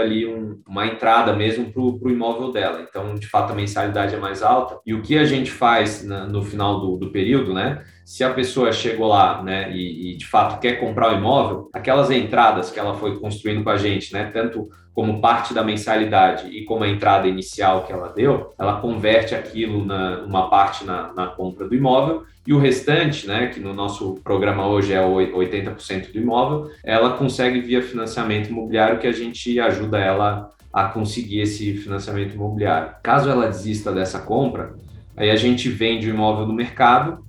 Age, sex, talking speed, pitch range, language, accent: 20-39, male, 190 wpm, 95-120 Hz, Portuguese, Brazilian